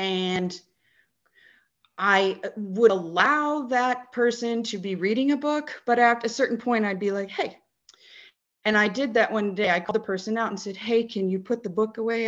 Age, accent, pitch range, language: 30-49, American, 190-230 Hz, English